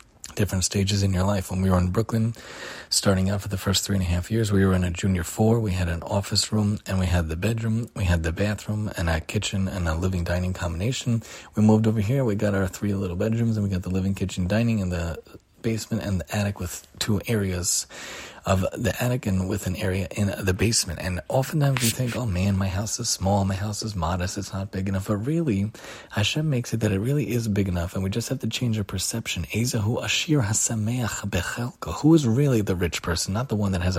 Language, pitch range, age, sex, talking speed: English, 95-115 Hz, 30-49, male, 235 wpm